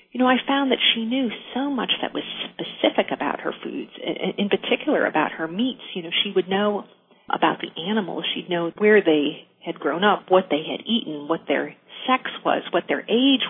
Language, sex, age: English, female, 40-59